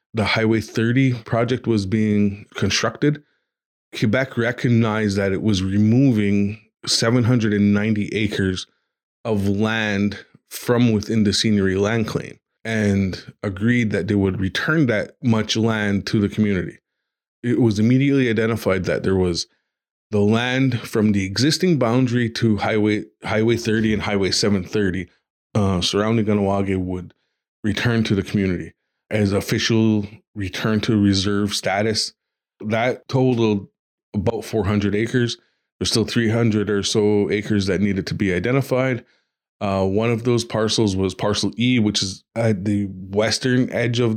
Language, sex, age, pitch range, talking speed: English, male, 20-39, 100-115 Hz, 135 wpm